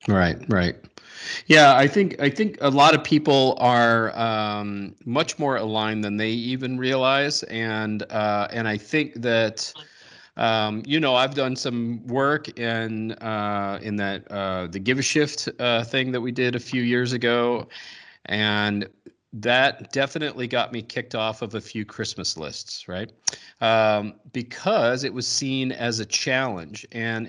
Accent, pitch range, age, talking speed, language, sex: American, 105-125 Hz, 40-59, 160 wpm, English, male